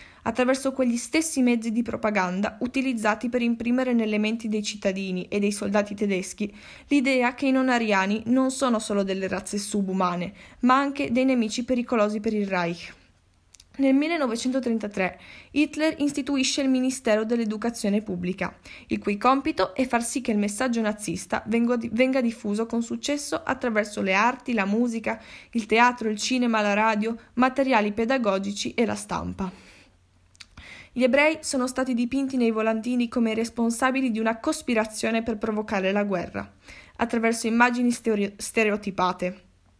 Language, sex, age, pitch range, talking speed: Italian, female, 10-29, 200-250 Hz, 140 wpm